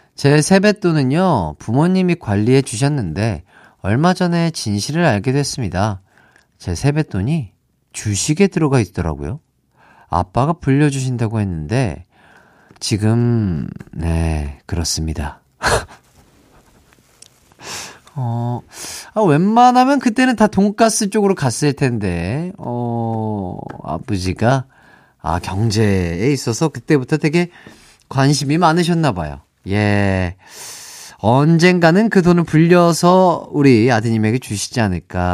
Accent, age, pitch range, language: native, 40-59, 100-165 Hz, Korean